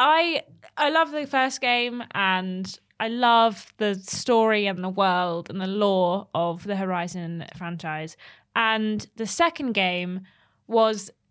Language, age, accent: English, 20-39, British